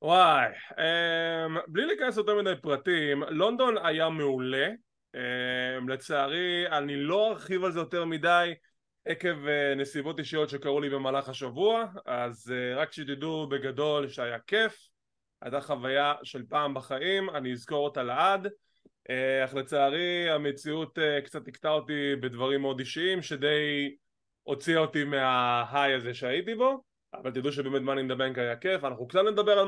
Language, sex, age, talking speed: English, male, 20-39, 125 wpm